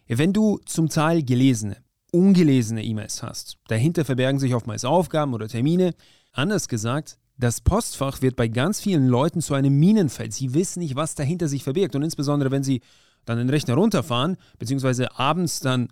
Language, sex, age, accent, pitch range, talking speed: German, male, 30-49, German, 120-155 Hz, 170 wpm